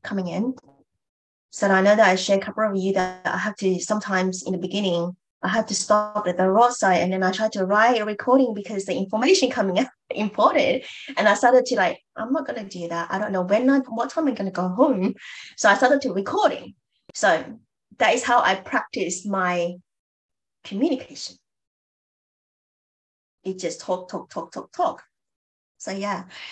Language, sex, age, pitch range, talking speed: English, female, 20-39, 195-255 Hz, 190 wpm